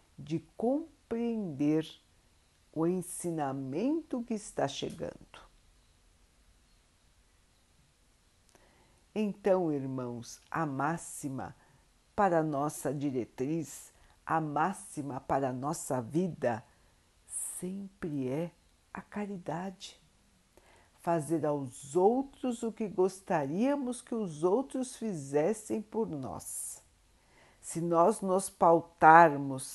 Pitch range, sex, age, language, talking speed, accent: 145-230 Hz, female, 60-79, Portuguese, 85 wpm, Brazilian